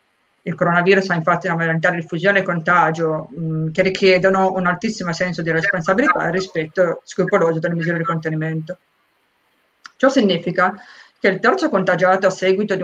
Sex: female